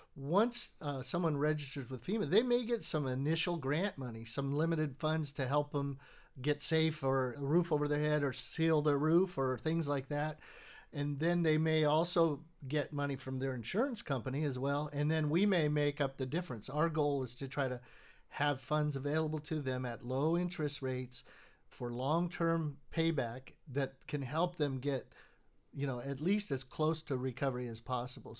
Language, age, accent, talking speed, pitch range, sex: English, 50-69, American, 190 wpm, 135-160 Hz, male